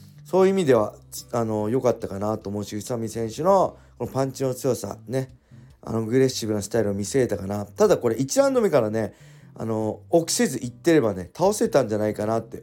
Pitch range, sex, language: 110-150 Hz, male, Japanese